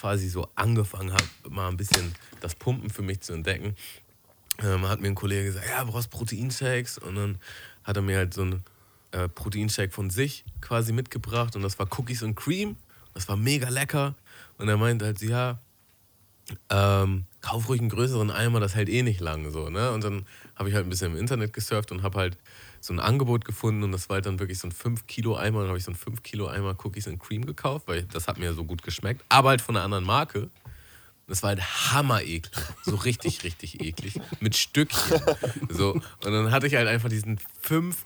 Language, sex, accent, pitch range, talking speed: German, male, German, 95-120 Hz, 215 wpm